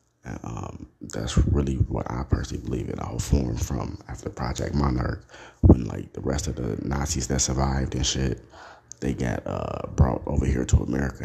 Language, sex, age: English, male, 30-49